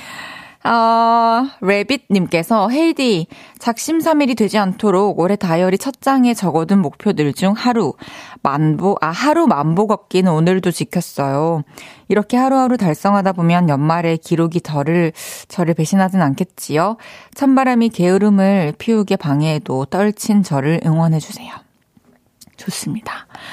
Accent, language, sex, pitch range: native, Korean, female, 170-220 Hz